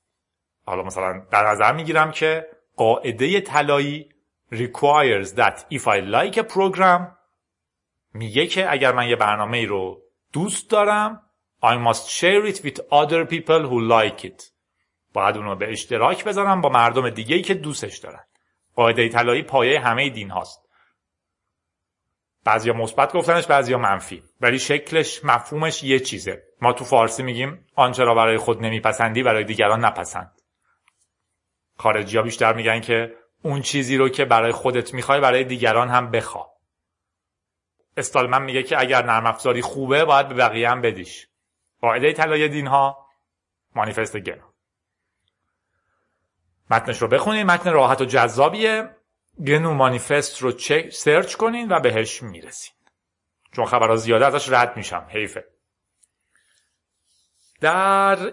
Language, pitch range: Persian, 105-150 Hz